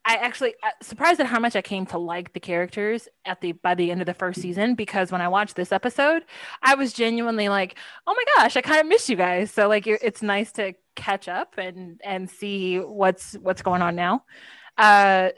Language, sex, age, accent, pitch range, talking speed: English, female, 20-39, American, 180-225 Hz, 225 wpm